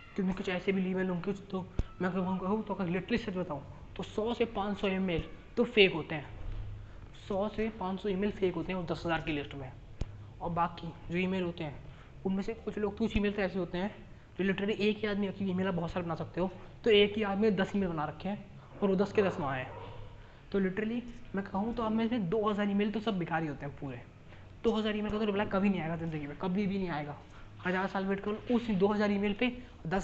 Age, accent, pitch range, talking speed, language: 20-39, native, 160-205 Hz, 240 wpm, Hindi